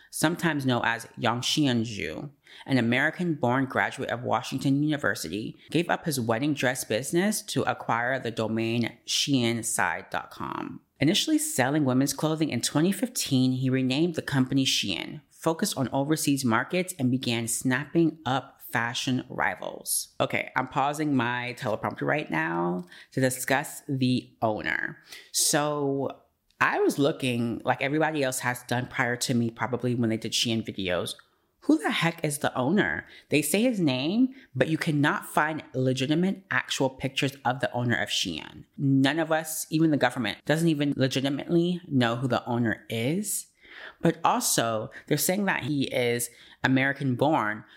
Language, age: English, 30-49